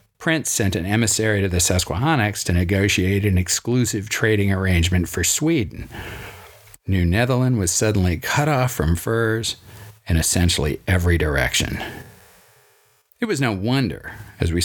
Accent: American